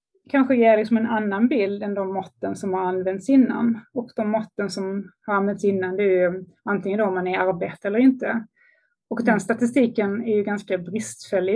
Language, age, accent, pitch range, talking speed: Swedish, 20-39, native, 190-230 Hz, 195 wpm